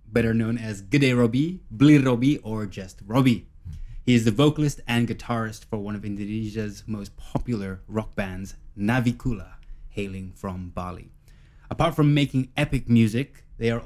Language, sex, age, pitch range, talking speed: English, male, 20-39, 100-130 Hz, 150 wpm